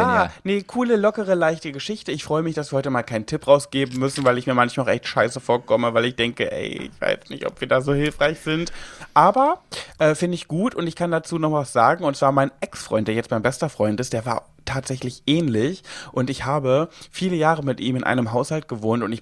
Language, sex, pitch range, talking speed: German, male, 125-165 Hz, 235 wpm